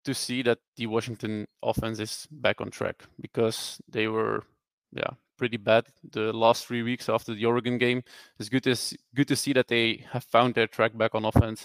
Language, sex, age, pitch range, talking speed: Dutch, male, 20-39, 115-130 Hz, 200 wpm